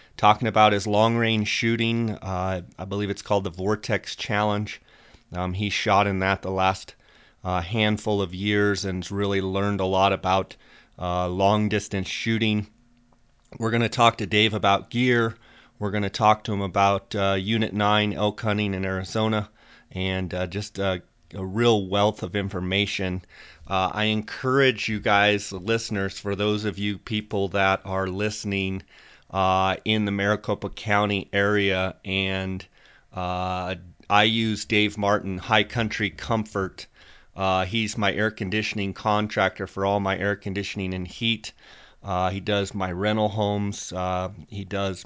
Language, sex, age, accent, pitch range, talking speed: English, male, 30-49, American, 95-105 Hz, 150 wpm